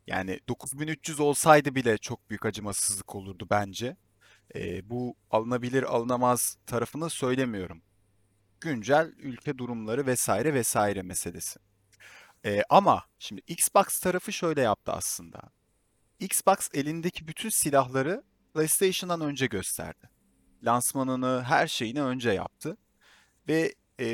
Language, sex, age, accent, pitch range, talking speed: Turkish, male, 30-49, native, 115-180 Hz, 105 wpm